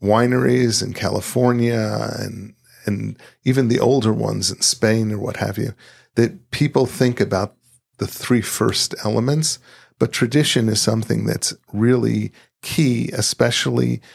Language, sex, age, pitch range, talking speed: English, male, 50-69, 105-125 Hz, 130 wpm